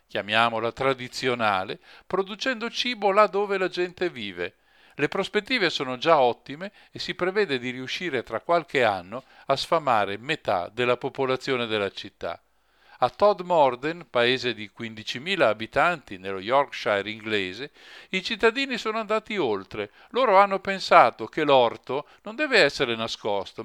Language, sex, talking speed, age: Italian, male, 130 wpm, 50-69